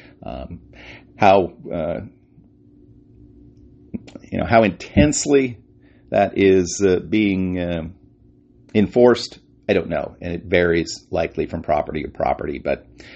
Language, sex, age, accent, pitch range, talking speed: English, male, 40-59, American, 85-110 Hz, 115 wpm